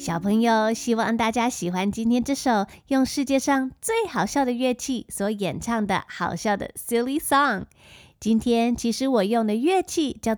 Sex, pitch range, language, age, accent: female, 210-280 Hz, Chinese, 20-39, American